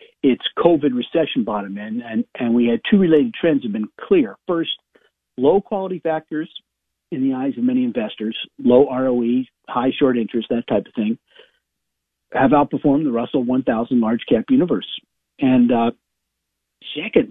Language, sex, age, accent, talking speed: English, male, 50-69, American, 150 wpm